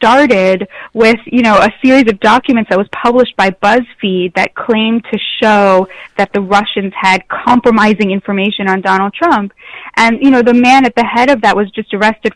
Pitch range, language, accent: 195-235 Hz, English, American